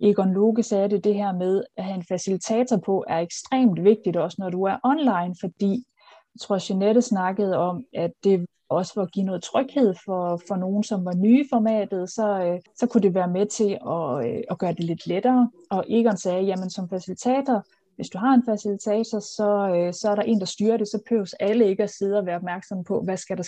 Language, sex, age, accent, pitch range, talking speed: Danish, female, 30-49, native, 185-220 Hz, 220 wpm